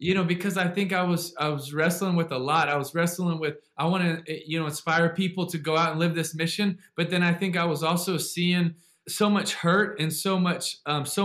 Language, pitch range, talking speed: English, 170-195 Hz, 250 wpm